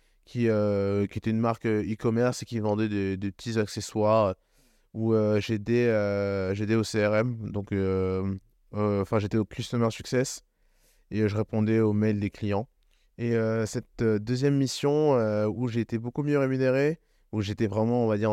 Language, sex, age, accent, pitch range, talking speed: French, male, 20-39, French, 105-125 Hz, 180 wpm